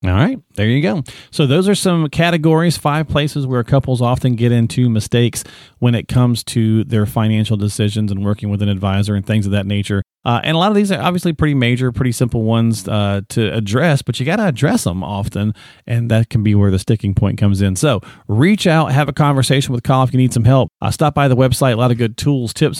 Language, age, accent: English, 40-59, American